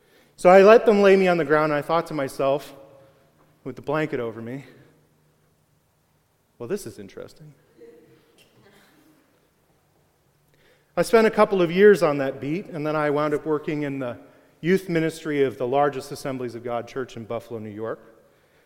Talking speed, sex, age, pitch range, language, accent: 170 wpm, male, 30-49, 140-190 Hz, English, American